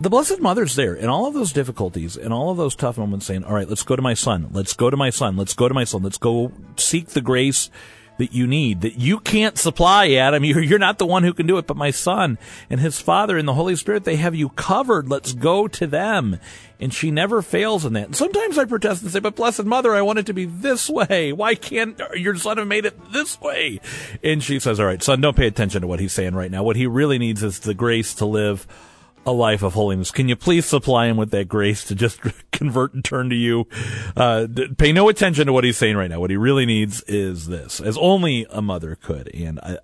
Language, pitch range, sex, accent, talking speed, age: English, 105-160 Hz, male, American, 255 wpm, 40-59